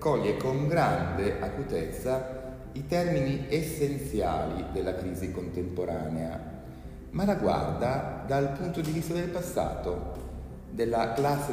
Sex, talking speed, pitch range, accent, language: male, 110 wpm, 90-140 Hz, native, Italian